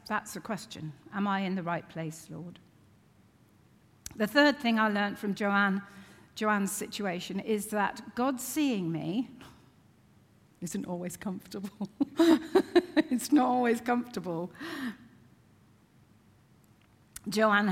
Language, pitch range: English, 170-215 Hz